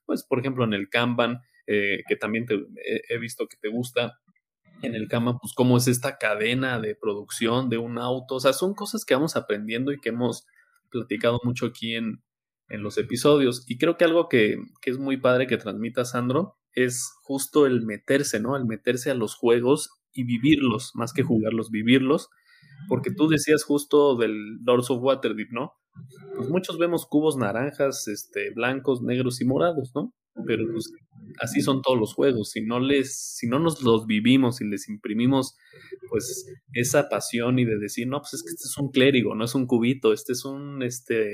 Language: Spanish